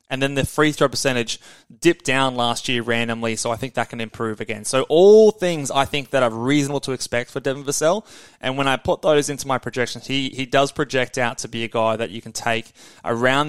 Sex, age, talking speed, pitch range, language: male, 20-39, 235 wpm, 115-145 Hz, English